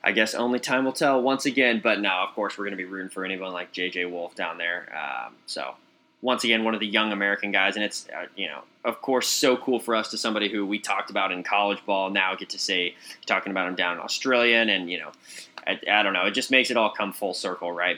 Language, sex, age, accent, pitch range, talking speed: English, male, 20-39, American, 95-120 Hz, 265 wpm